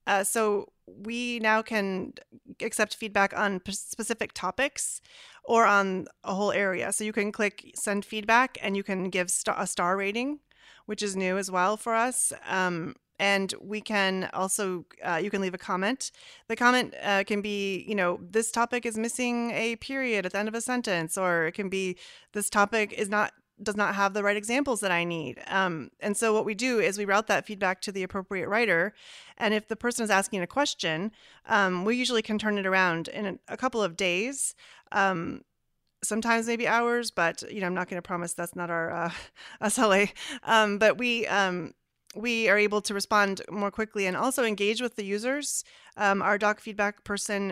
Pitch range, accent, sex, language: 190-220 Hz, American, female, English